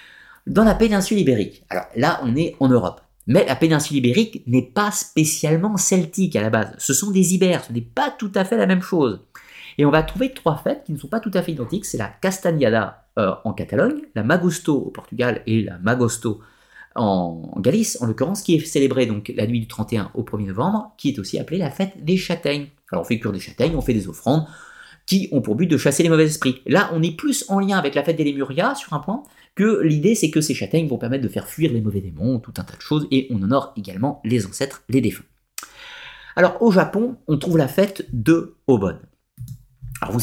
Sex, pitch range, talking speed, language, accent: male, 115-180 Hz, 235 wpm, French, French